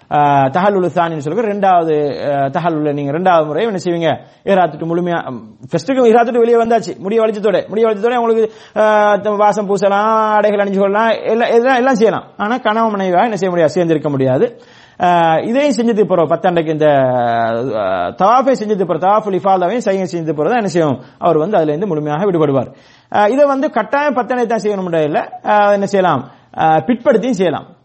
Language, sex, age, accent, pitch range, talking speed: English, male, 30-49, Indian, 155-215 Hz, 75 wpm